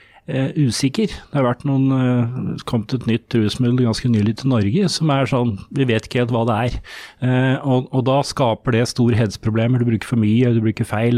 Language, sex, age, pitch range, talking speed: English, male, 30-49, 115-140 Hz, 220 wpm